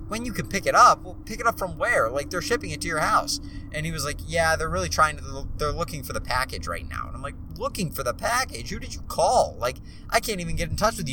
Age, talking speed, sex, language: 20-39, 290 wpm, male, English